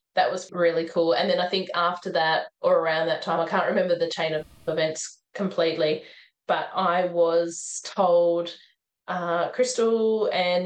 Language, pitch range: English, 170-200 Hz